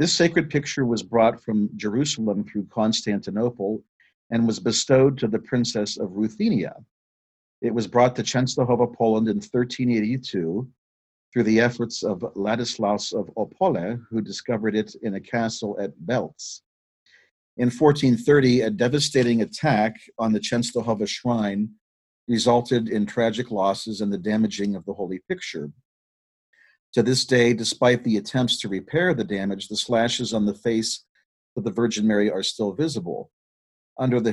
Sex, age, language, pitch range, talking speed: male, 50-69, English, 105-120 Hz, 145 wpm